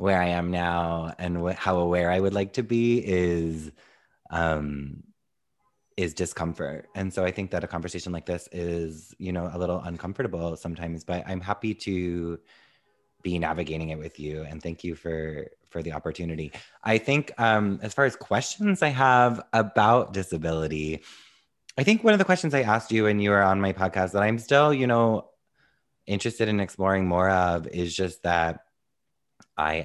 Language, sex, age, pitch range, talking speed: English, male, 20-39, 85-100 Hz, 180 wpm